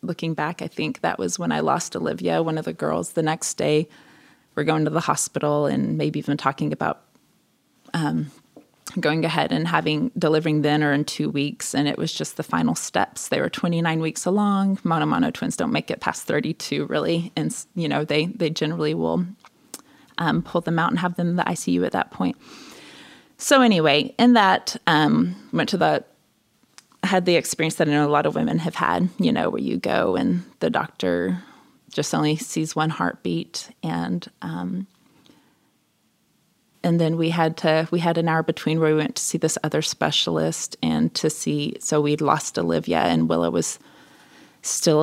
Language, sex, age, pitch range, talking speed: English, female, 20-39, 145-180 Hz, 190 wpm